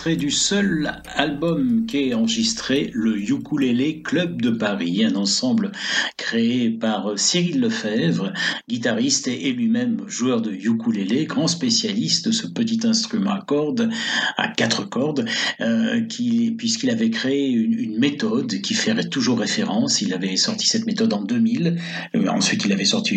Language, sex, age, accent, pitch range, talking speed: French, male, 60-79, French, 195-245 Hz, 150 wpm